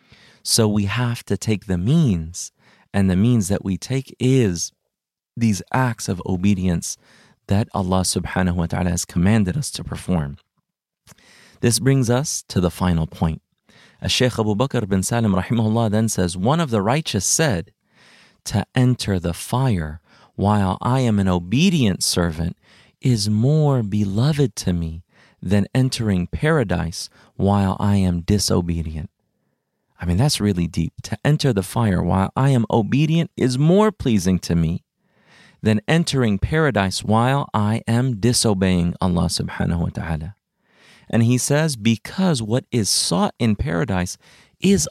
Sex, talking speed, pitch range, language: male, 145 wpm, 95-130 Hz, English